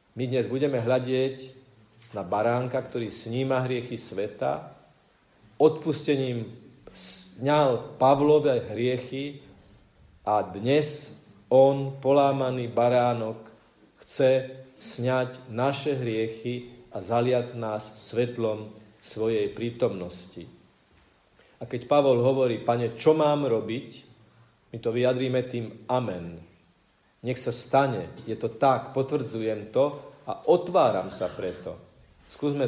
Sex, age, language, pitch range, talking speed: male, 50-69, Slovak, 110-135 Hz, 100 wpm